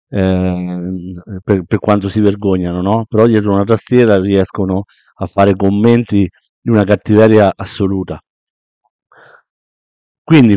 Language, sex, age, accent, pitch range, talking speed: Italian, male, 50-69, native, 100-130 Hz, 115 wpm